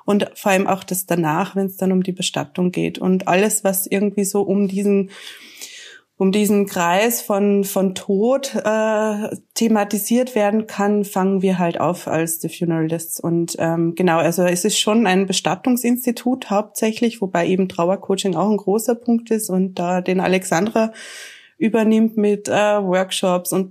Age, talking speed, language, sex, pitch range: 20-39, 165 wpm, German, female, 185-210 Hz